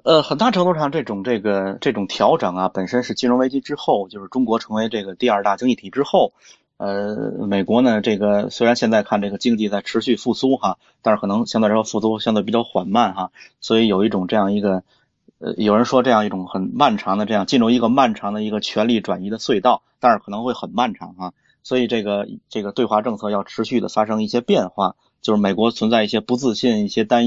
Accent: native